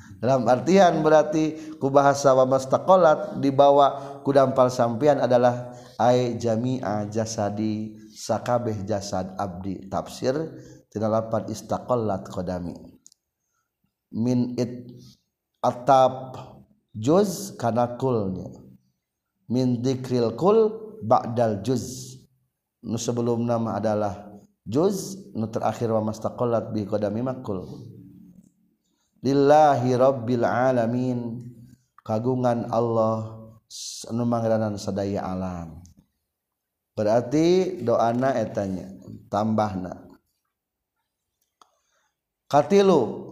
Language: Indonesian